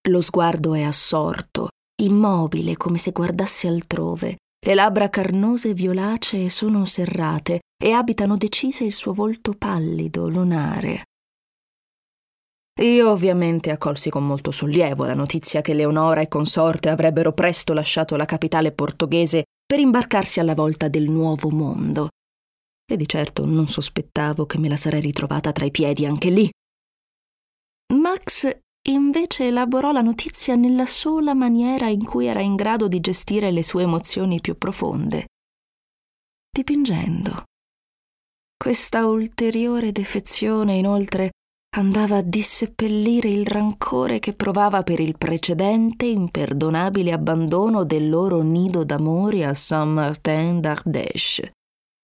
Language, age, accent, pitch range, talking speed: Italian, 20-39, native, 155-210 Hz, 120 wpm